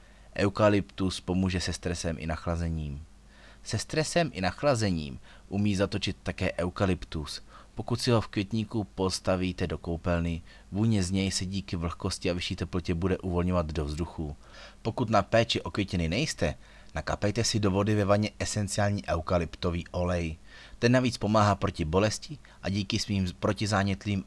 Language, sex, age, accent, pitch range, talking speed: Czech, male, 30-49, native, 85-100 Hz, 145 wpm